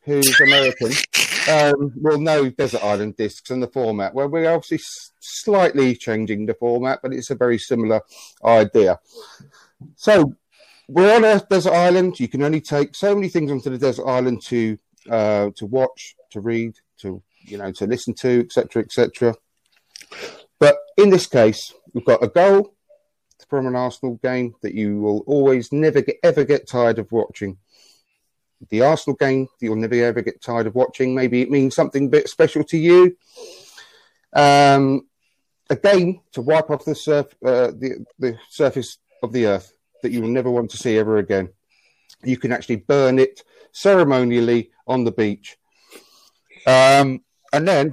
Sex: male